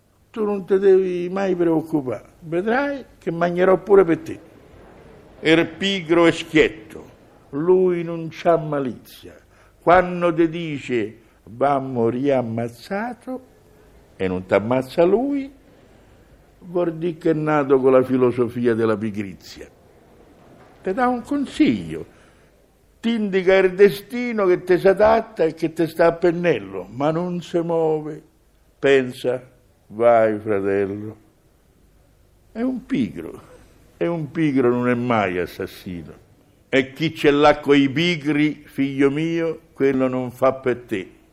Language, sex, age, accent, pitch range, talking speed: Italian, male, 60-79, native, 110-175 Hz, 125 wpm